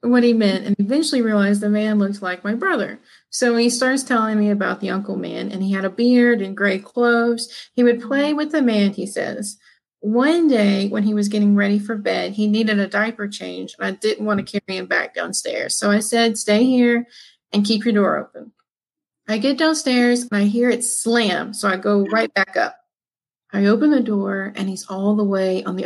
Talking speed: 220 wpm